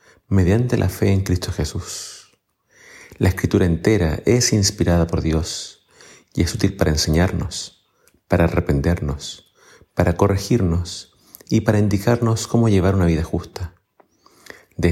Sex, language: male, Spanish